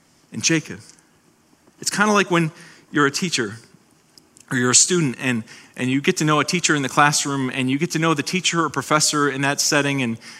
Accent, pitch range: American, 130-180 Hz